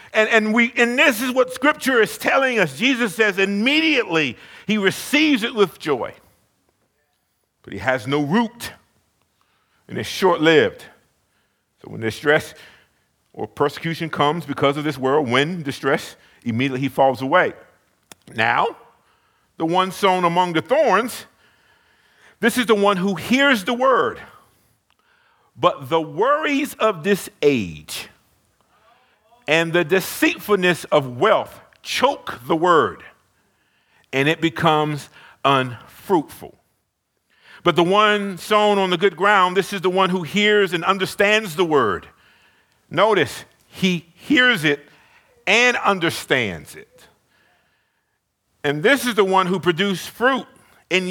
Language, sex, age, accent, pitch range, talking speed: English, male, 50-69, American, 165-230 Hz, 130 wpm